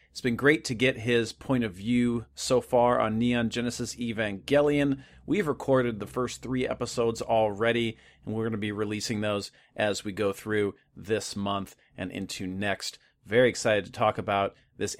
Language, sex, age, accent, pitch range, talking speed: English, male, 40-59, American, 110-140 Hz, 175 wpm